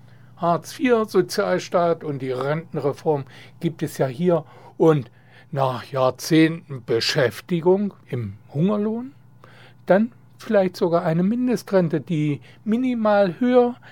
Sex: male